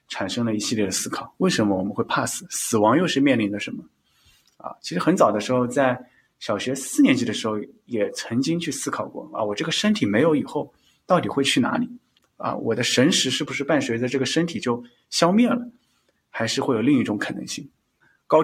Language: Chinese